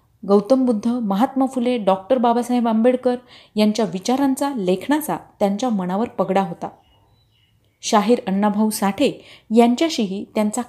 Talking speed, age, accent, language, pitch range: 105 wpm, 30-49, native, Marathi, 190-255 Hz